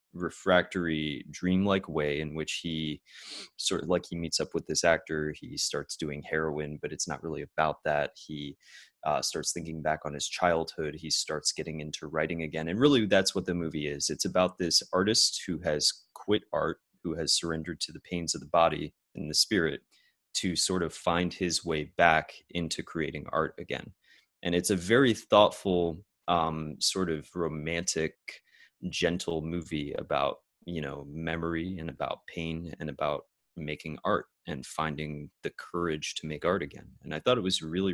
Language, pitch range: English, 80-90 Hz